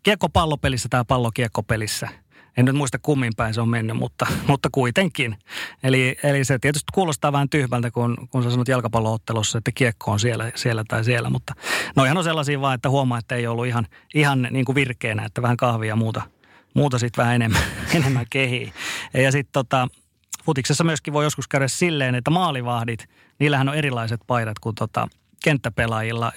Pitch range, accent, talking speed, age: 120-145 Hz, native, 175 wpm, 30-49